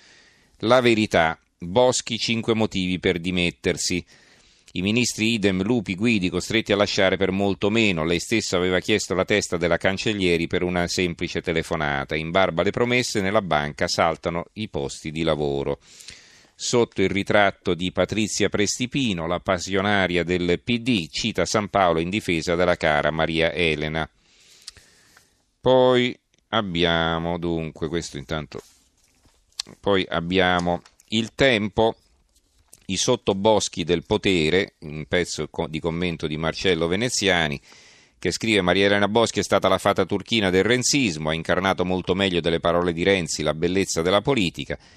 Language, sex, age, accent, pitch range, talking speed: Italian, male, 40-59, native, 85-105 Hz, 140 wpm